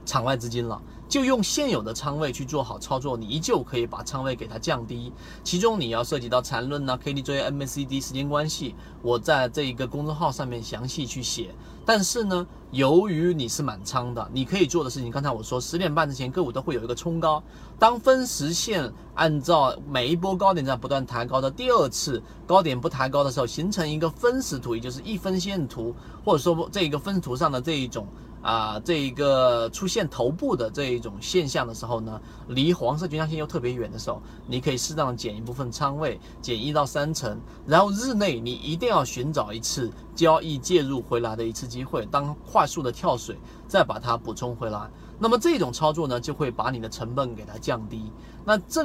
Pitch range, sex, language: 120-165 Hz, male, Chinese